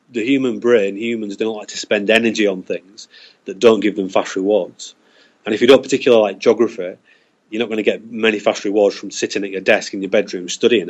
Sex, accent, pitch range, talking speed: male, British, 105-120 Hz, 225 wpm